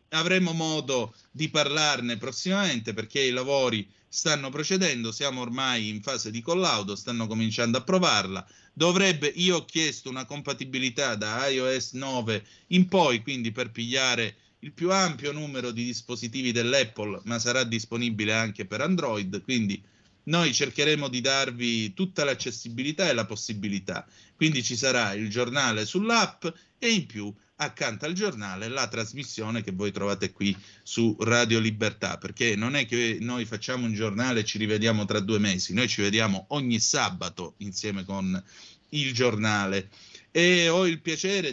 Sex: male